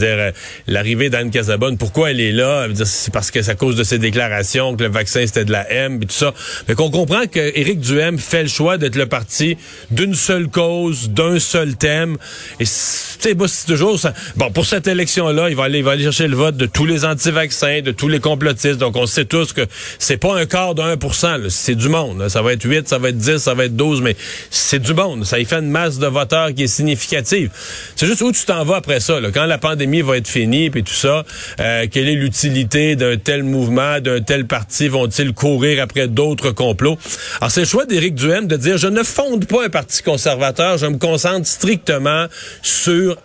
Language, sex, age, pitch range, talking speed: French, male, 40-59, 130-170 Hz, 235 wpm